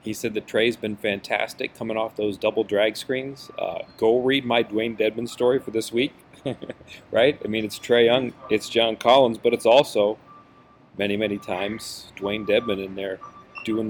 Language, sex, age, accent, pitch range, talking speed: English, male, 40-59, American, 105-120 Hz, 180 wpm